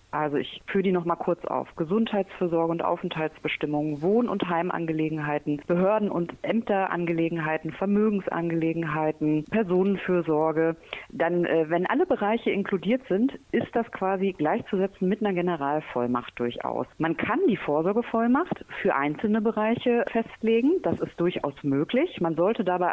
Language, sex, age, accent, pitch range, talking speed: German, female, 40-59, German, 160-220 Hz, 125 wpm